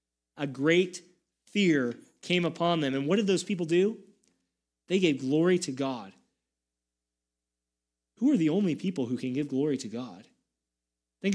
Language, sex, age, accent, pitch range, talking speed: English, male, 30-49, American, 135-205 Hz, 155 wpm